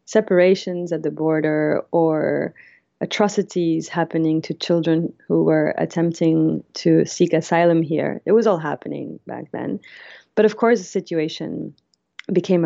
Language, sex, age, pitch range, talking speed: English, female, 30-49, 160-190 Hz, 135 wpm